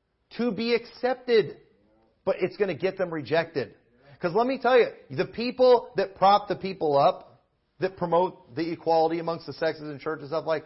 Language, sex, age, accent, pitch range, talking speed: English, male, 40-59, American, 160-215 Hz, 190 wpm